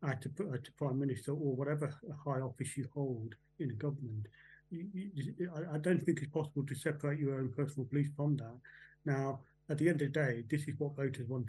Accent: British